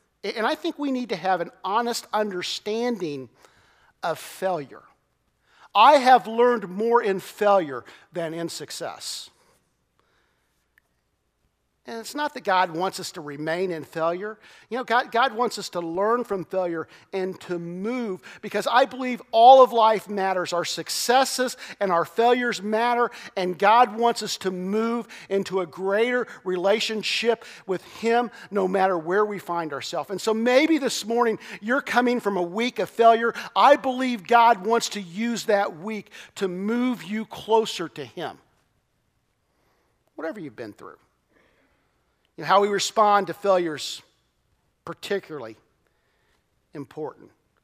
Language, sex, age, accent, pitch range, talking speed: English, male, 50-69, American, 180-230 Hz, 145 wpm